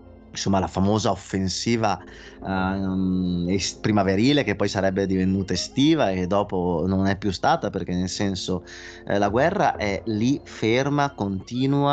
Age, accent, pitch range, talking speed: 20-39, native, 90-100 Hz, 130 wpm